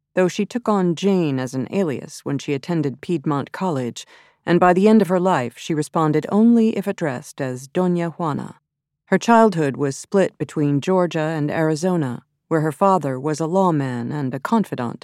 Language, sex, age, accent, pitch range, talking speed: English, female, 40-59, American, 145-190 Hz, 180 wpm